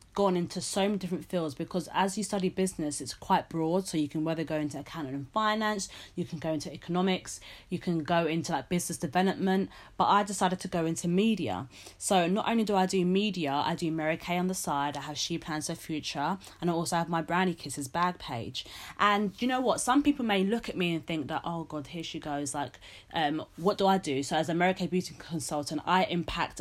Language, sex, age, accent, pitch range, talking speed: English, female, 20-39, British, 155-190 Hz, 235 wpm